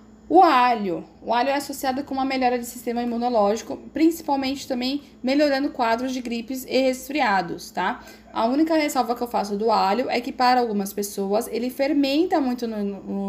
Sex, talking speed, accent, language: female, 175 wpm, Brazilian, Portuguese